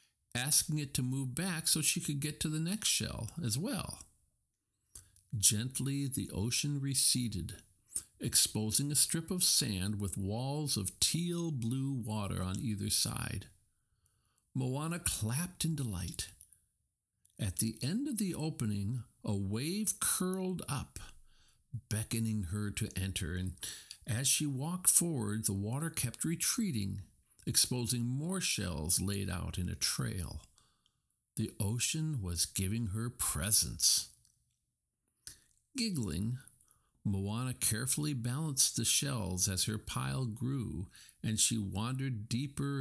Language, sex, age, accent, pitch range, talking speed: English, male, 50-69, American, 100-145 Hz, 125 wpm